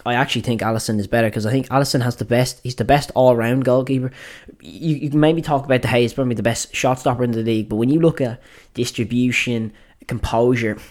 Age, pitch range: 10-29, 110-130 Hz